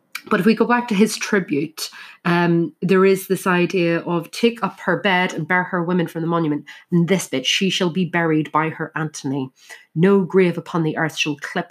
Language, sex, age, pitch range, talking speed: English, female, 30-49, 155-205 Hz, 215 wpm